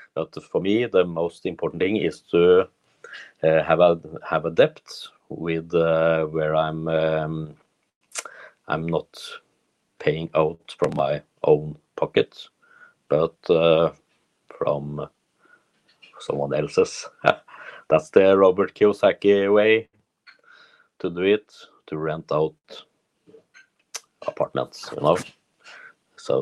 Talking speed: 110 wpm